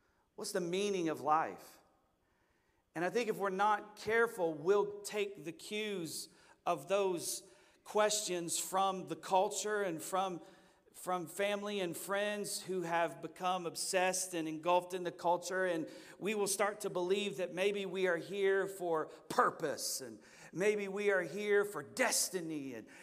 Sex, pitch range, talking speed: male, 185-220 Hz, 150 wpm